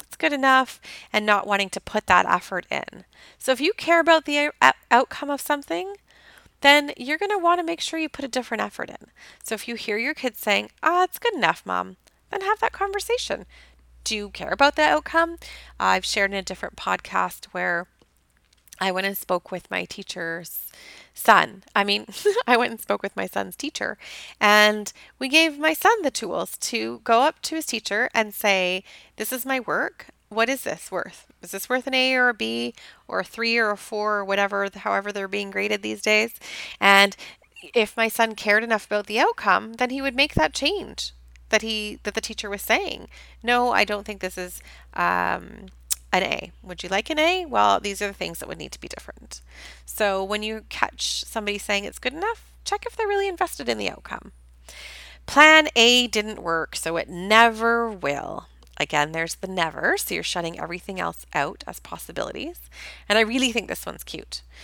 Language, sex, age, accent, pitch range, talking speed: English, female, 30-49, American, 185-280 Hz, 205 wpm